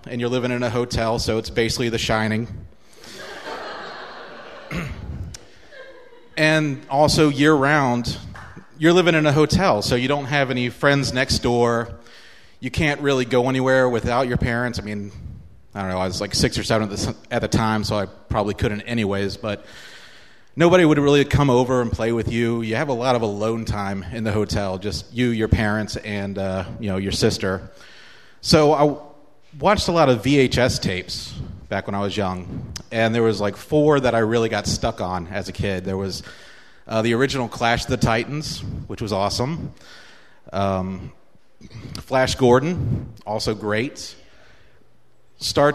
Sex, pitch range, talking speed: male, 105-140 Hz, 170 wpm